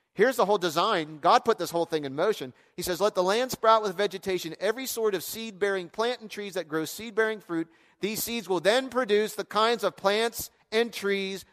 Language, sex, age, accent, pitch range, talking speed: English, male, 40-59, American, 155-230 Hz, 215 wpm